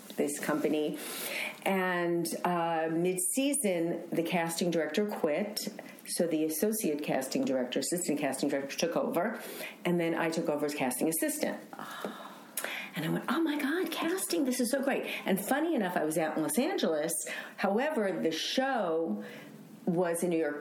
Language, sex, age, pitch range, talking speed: English, female, 50-69, 150-190 Hz, 155 wpm